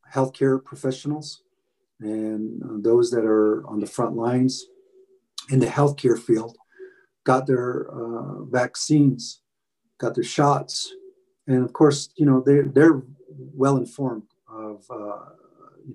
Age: 40-59